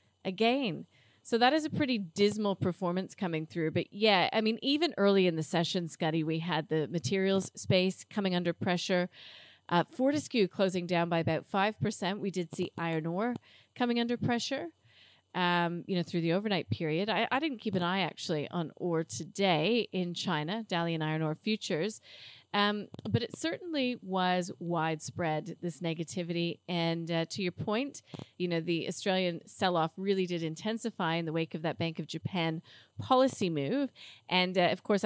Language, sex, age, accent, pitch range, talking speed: English, female, 40-59, American, 165-200 Hz, 175 wpm